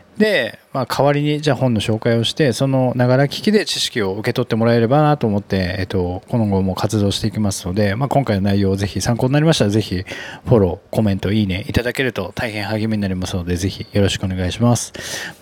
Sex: male